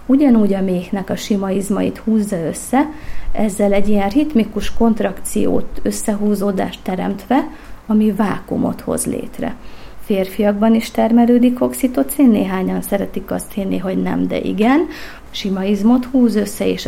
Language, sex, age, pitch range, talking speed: Hungarian, female, 30-49, 195-235 Hz, 120 wpm